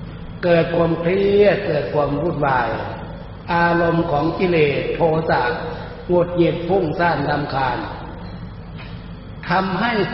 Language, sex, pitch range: Thai, male, 140-170 Hz